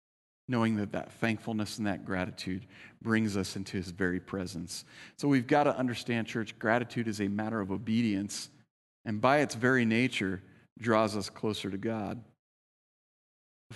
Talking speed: 155 wpm